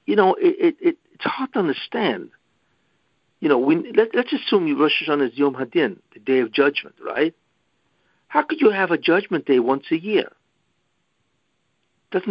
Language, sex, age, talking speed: English, male, 60-79, 175 wpm